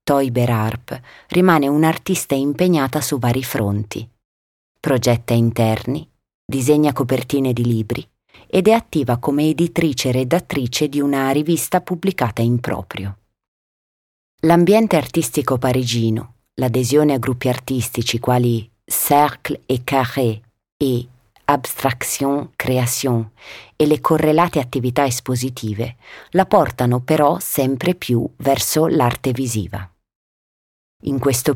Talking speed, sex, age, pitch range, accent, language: 105 wpm, female, 30-49, 120-155 Hz, Italian, German